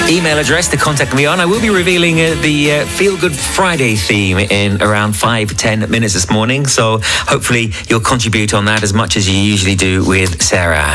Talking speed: 210 wpm